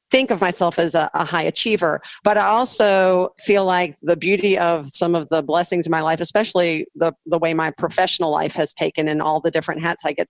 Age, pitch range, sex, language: 40-59, 155-180 Hz, female, English